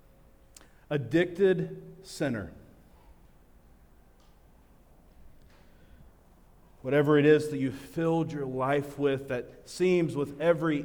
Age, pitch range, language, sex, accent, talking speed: 40-59, 105-145 Hz, English, male, American, 85 wpm